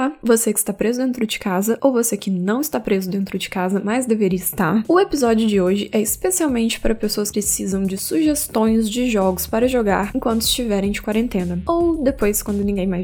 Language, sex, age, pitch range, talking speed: Portuguese, female, 10-29, 200-250 Hz, 200 wpm